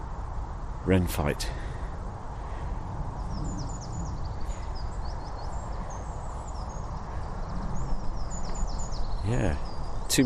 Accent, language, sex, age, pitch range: British, English, male, 50-69, 75-95 Hz